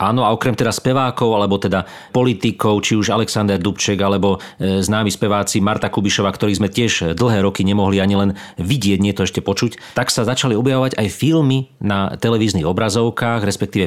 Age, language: 40-59, Slovak